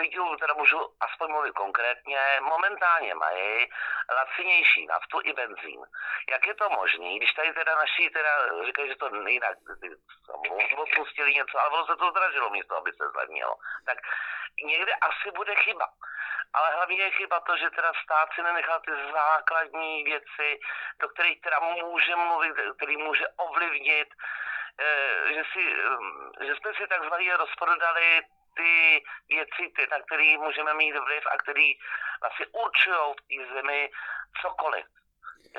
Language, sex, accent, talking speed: Czech, male, native, 140 wpm